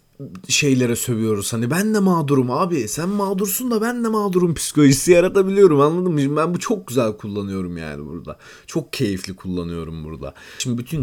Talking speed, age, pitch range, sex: 165 wpm, 30-49, 105-165 Hz, male